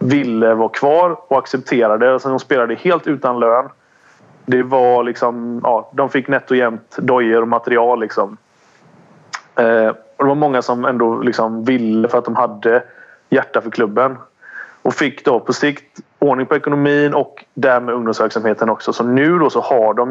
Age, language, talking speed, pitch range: 30-49, English, 165 wpm, 115-140 Hz